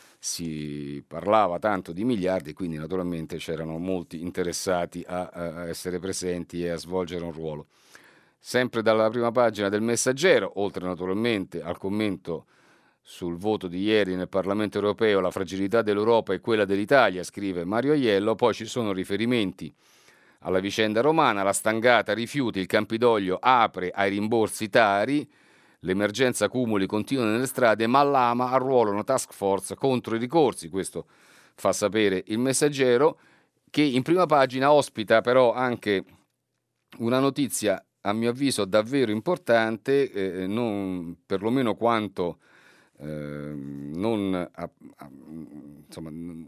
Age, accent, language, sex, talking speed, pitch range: 50-69, native, Italian, male, 130 wpm, 90-120 Hz